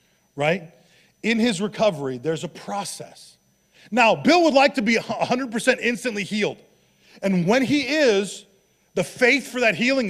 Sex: male